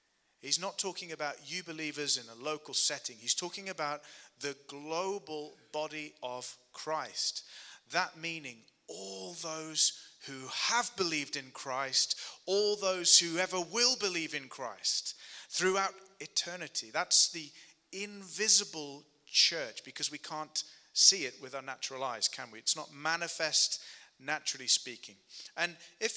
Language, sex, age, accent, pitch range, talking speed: English, male, 30-49, British, 150-185 Hz, 135 wpm